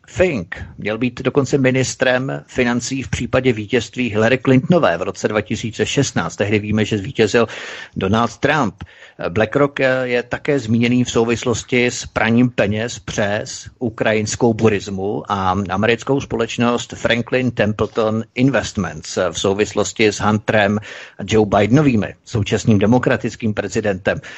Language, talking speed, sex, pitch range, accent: Czech, 115 wpm, male, 105-125 Hz, native